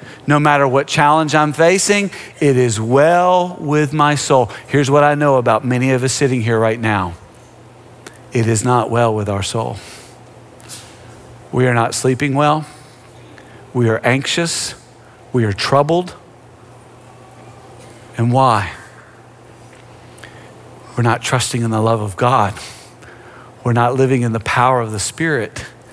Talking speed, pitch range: 140 wpm, 120-145 Hz